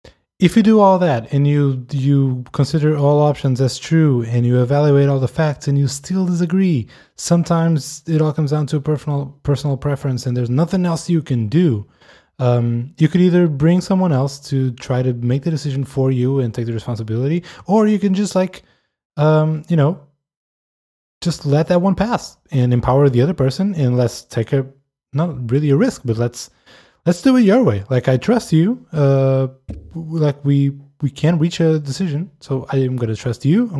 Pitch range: 120-155 Hz